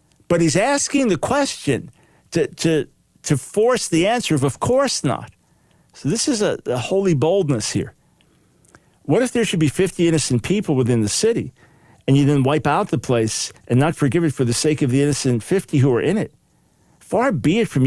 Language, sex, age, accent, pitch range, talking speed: English, male, 50-69, American, 125-165 Hz, 200 wpm